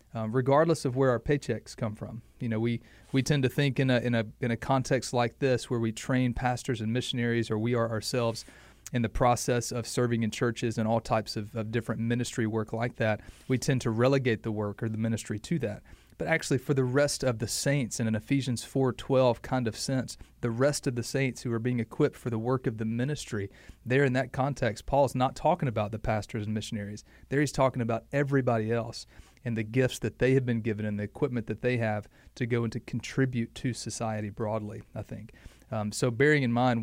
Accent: American